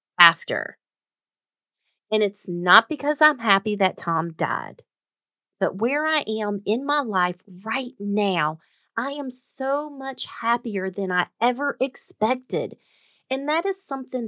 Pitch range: 195-270 Hz